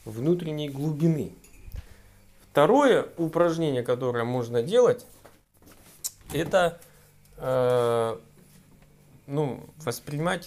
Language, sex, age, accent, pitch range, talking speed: Russian, male, 20-39, native, 120-170 Hz, 65 wpm